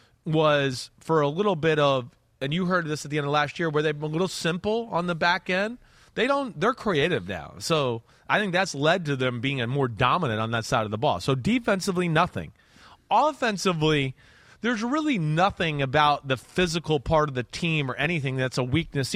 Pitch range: 140-220 Hz